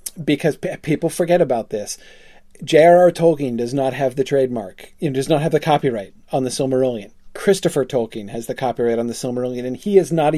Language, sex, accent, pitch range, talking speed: English, male, American, 130-165 Hz, 190 wpm